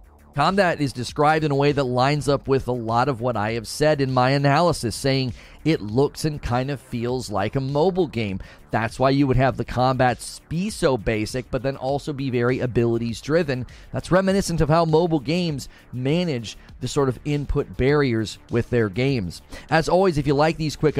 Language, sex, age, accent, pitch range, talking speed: English, male, 30-49, American, 120-160 Hz, 195 wpm